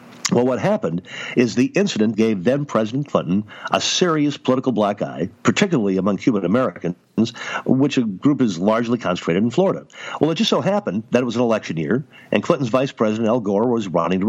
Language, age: English, 60-79